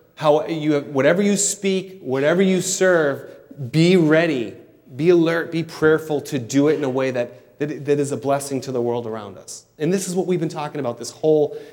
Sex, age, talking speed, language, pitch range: male, 30-49, 195 wpm, English, 120-155 Hz